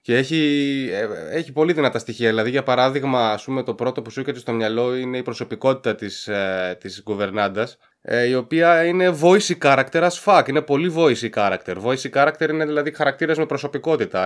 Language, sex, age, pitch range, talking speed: Greek, male, 20-39, 110-155 Hz, 180 wpm